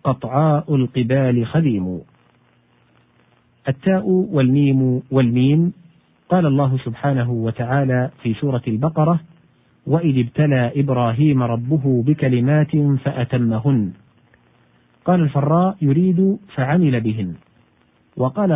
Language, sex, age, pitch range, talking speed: Arabic, male, 40-59, 115-150 Hz, 80 wpm